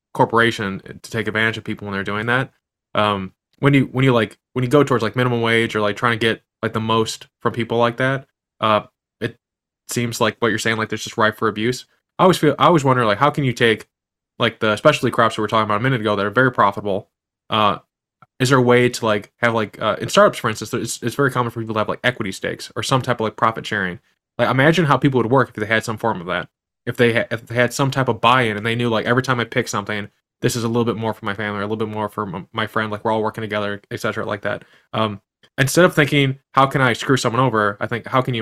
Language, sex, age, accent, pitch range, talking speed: English, male, 20-39, American, 110-140 Hz, 280 wpm